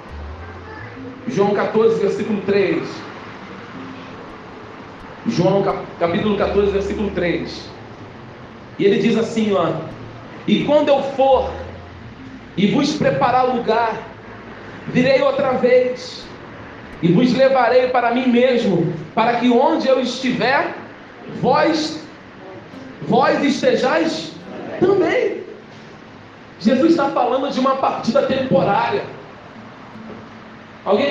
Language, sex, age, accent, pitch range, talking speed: Portuguese, male, 40-59, Brazilian, 170-270 Hz, 90 wpm